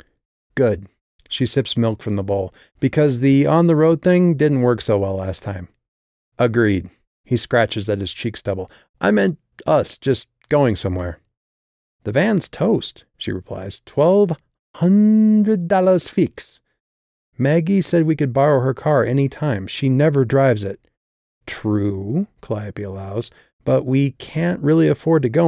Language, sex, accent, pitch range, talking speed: English, male, American, 100-140 Hz, 145 wpm